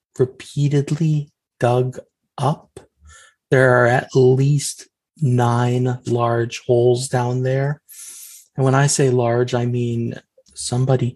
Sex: male